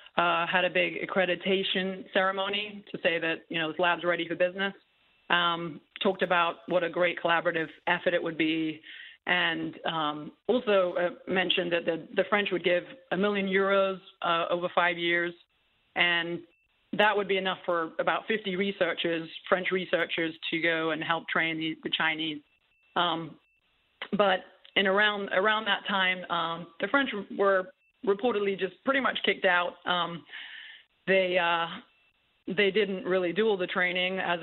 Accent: American